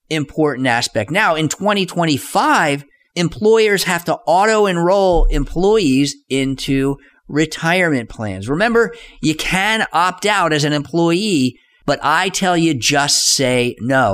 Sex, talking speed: male, 120 wpm